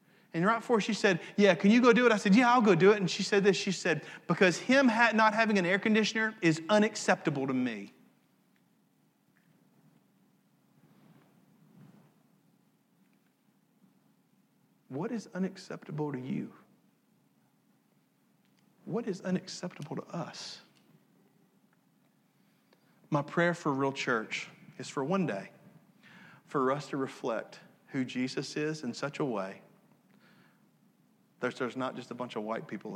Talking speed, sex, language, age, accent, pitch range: 135 wpm, male, English, 40-59, American, 130-205 Hz